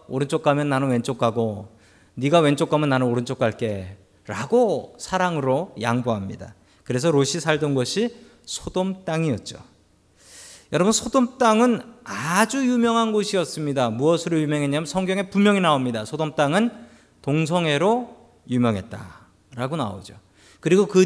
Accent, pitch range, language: native, 115-185 Hz, Korean